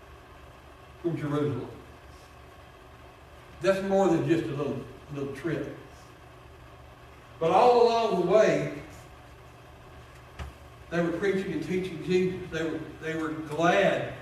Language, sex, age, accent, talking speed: English, male, 60-79, American, 100 wpm